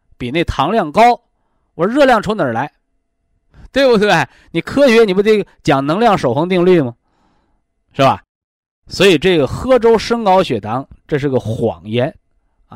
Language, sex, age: Chinese, male, 20-39